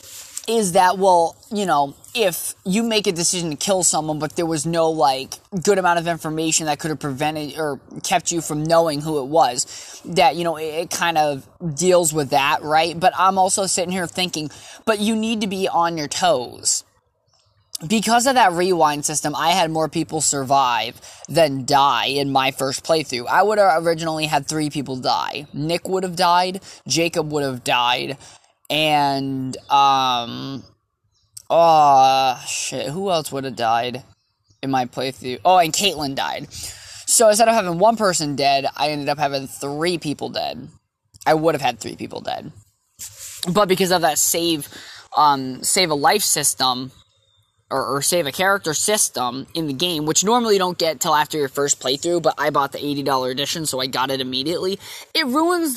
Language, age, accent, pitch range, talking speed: English, 20-39, American, 135-180 Hz, 180 wpm